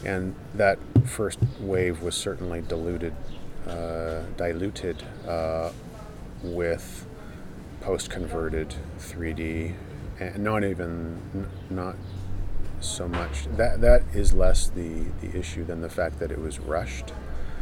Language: English